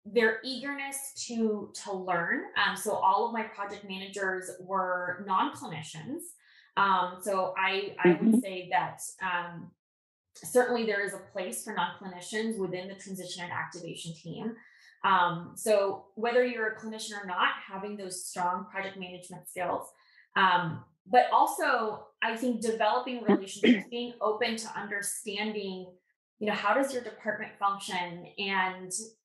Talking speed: 140 wpm